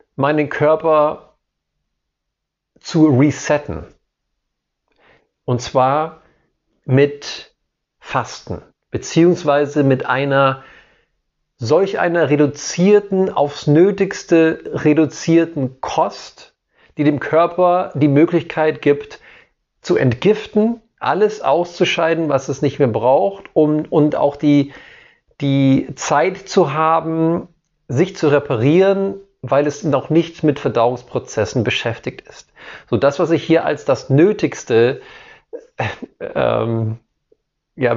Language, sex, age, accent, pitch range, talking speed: German, male, 40-59, German, 140-175 Hz, 95 wpm